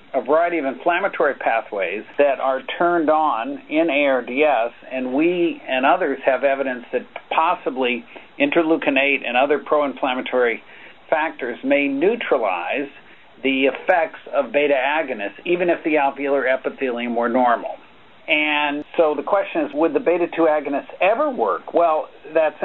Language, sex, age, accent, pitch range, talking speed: English, male, 50-69, American, 135-170 Hz, 135 wpm